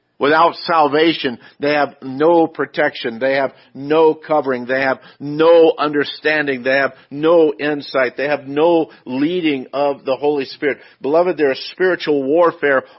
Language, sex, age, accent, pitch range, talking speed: English, male, 50-69, American, 130-160 Hz, 145 wpm